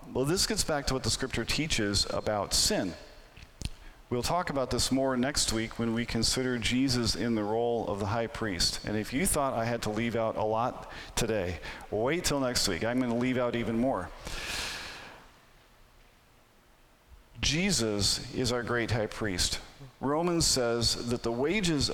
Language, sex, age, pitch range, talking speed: English, male, 40-59, 110-125 Hz, 170 wpm